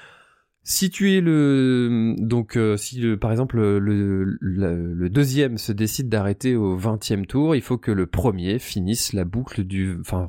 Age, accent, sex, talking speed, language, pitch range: 20-39, French, male, 170 wpm, French, 95-130 Hz